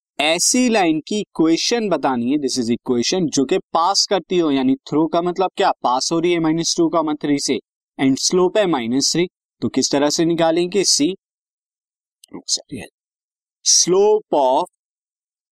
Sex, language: male, Hindi